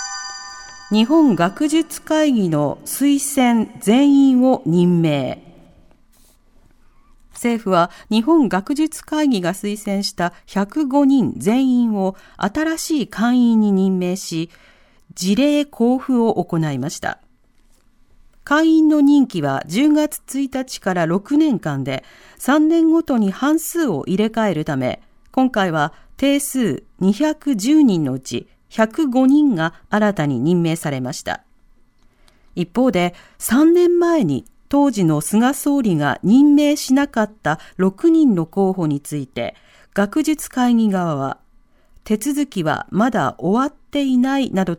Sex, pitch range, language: female, 170-275 Hz, Japanese